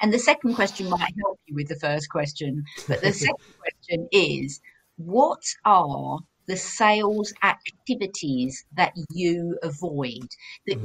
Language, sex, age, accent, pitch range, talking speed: English, female, 50-69, British, 140-185 Hz, 140 wpm